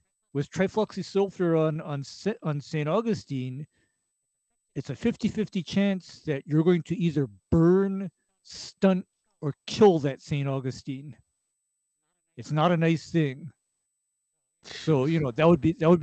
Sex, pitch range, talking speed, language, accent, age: male, 145-175 Hz, 140 wpm, English, American, 50-69